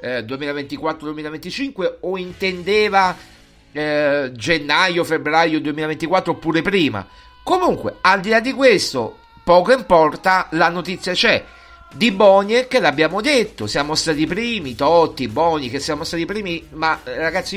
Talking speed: 125 wpm